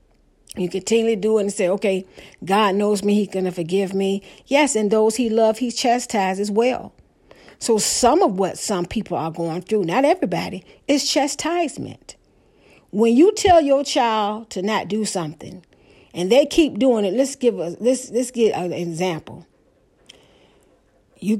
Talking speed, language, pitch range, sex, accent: 165 wpm, English, 200-260 Hz, female, American